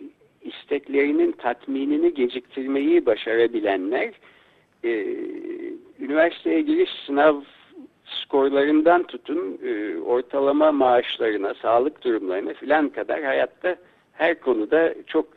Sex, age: male, 60-79